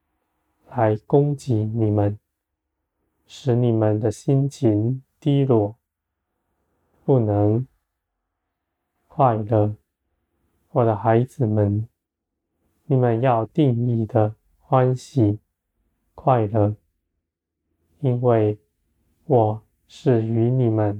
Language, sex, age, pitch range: Chinese, male, 20-39, 85-120 Hz